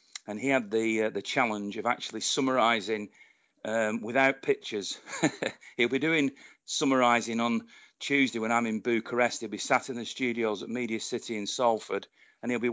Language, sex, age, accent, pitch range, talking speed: English, male, 40-59, British, 110-135 Hz, 175 wpm